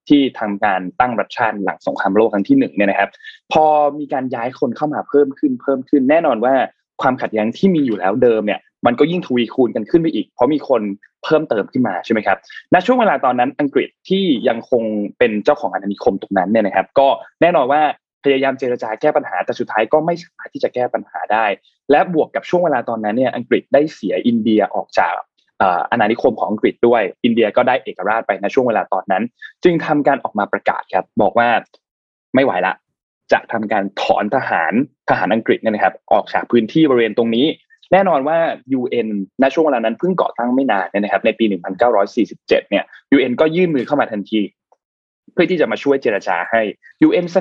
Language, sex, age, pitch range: Thai, male, 20-39, 115-170 Hz